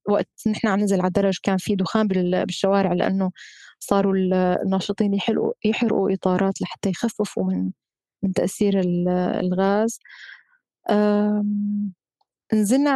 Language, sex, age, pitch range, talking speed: Arabic, female, 20-39, 190-220 Hz, 100 wpm